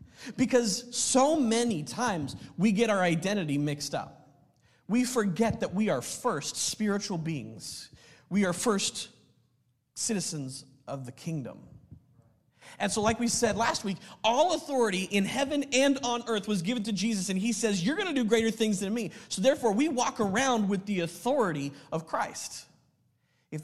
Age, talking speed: 40-59, 165 wpm